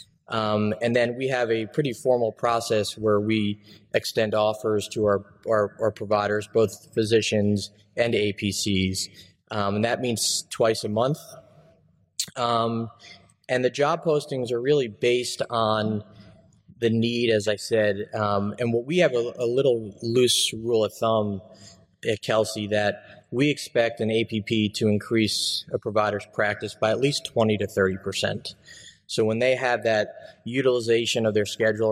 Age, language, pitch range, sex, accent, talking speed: 20-39, English, 105-120 Hz, male, American, 155 wpm